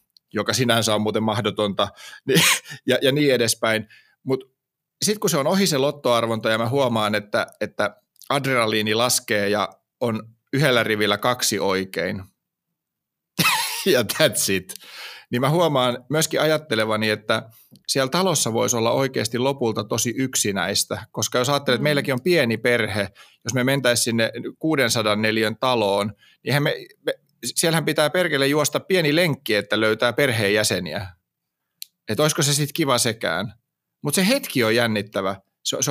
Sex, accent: male, native